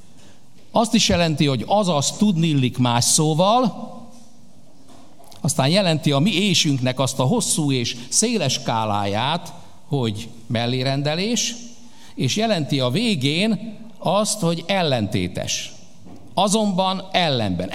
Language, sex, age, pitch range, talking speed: Hungarian, male, 60-79, 130-195 Hz, 105 wpm